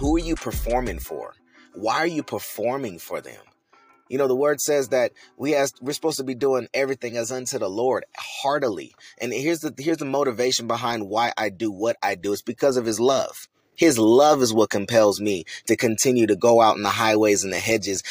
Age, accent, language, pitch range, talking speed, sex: 30-49, American, English, 110-140 Hz, 215 wpm, male